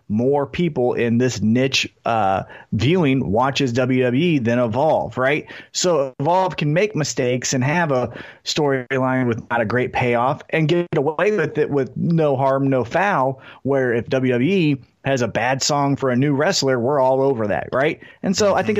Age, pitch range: 30-49, 125-155 Hz